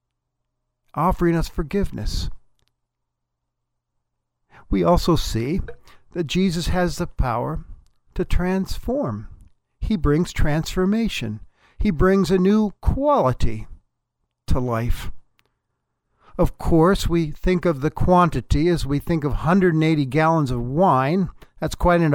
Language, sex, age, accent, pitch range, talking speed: English, male, 60-79, American, 130-185 Hz, 110 wpm